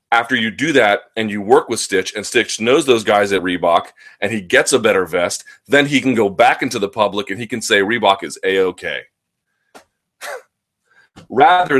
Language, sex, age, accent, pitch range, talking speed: English, male, 30-49, American, 100-130 Hz, 200 wpm